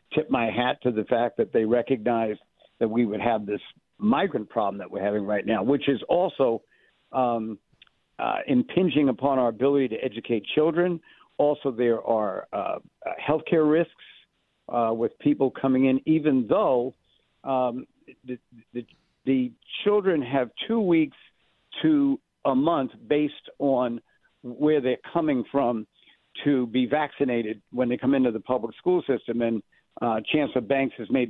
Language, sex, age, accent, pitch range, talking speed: English, male, 60-79, American, 120-145 Hz, 155 wpm